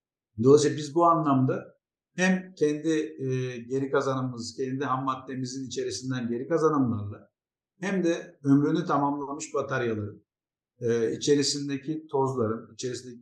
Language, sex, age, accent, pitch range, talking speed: Turkish, male, 50-69, native, 130-160 Hz, 110 wpm